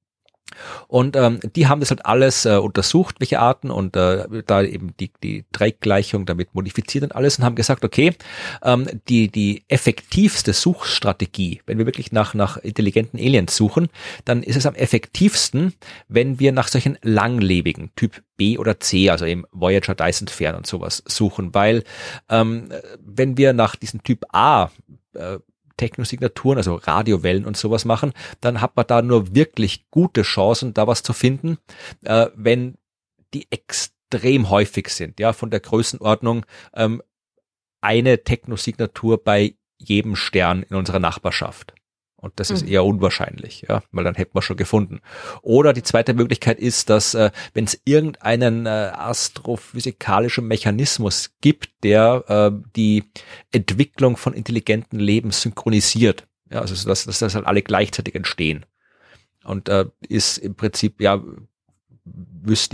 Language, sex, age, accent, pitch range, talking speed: German, male, 40-59, German, 100-120 Hz, 150 wpm